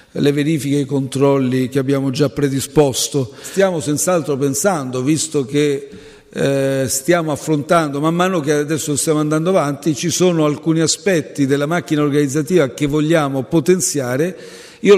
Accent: native